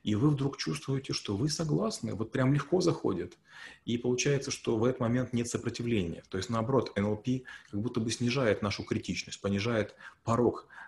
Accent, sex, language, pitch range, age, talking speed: native, male, Russian, 100-125 Hz, 30-49, 170 wpm